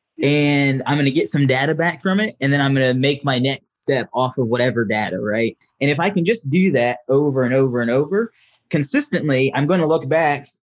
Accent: American